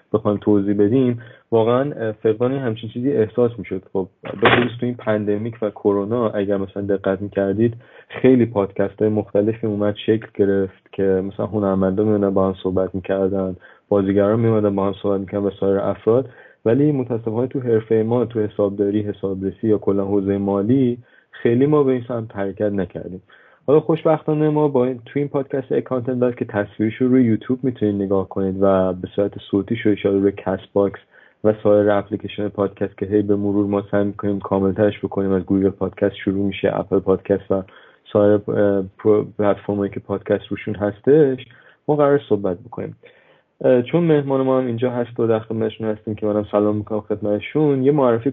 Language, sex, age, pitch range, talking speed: Persian, male, 30-49, 100-120 Hz, 180 wpm